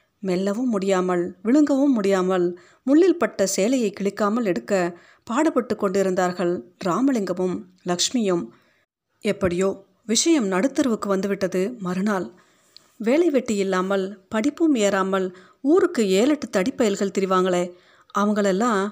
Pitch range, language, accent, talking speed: 185-240 Hz, Tamil, native, 90 wpm